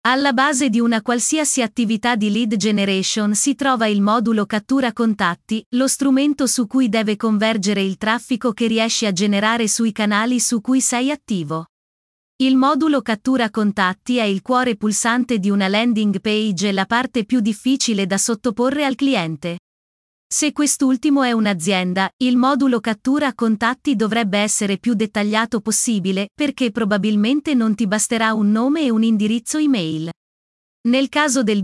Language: Italian